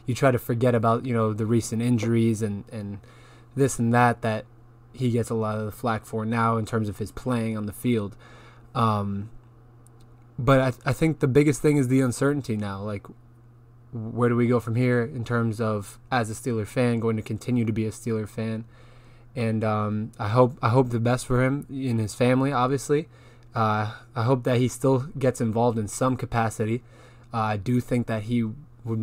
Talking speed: 205 wpm